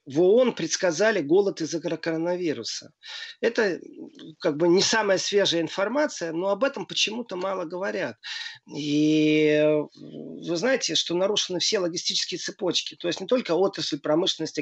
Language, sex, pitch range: Russian, male, 155-200 Hz